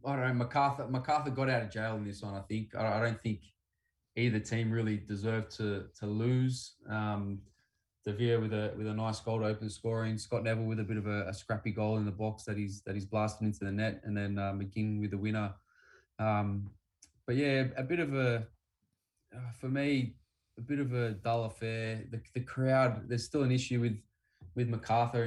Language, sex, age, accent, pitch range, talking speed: English, male, 20-39, Australian, 100-115 Hz, 210 wpm